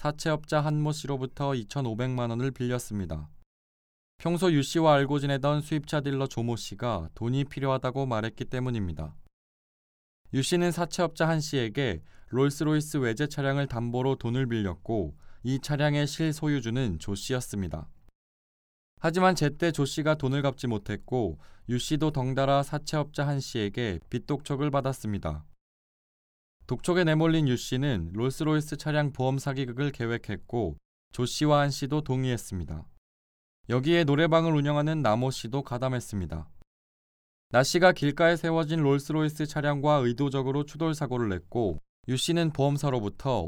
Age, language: 20-39, Korean